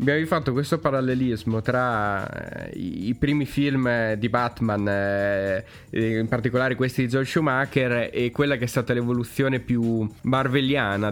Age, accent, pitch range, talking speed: 20-39, native, 110-135 Hz, 130 wpm